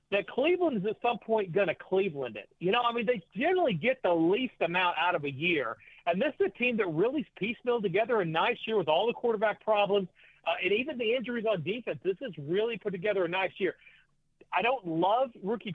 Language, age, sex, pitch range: English, 40-59, male, 170-215 Hz